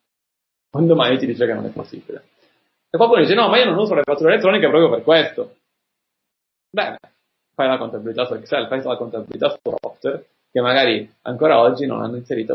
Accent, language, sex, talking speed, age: native, Italian, male, 195 wpm, 30-49